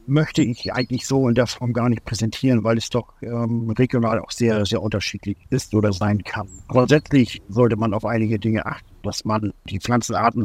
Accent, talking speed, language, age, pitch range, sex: German, 195 wpm, German, 50-69, 105-120 Hz, male